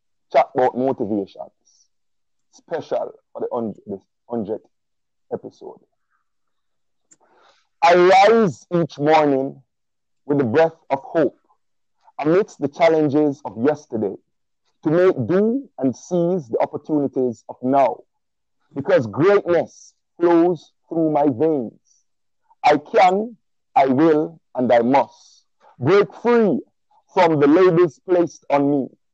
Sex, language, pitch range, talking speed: male, English, 135-185 Hz, 110 wpm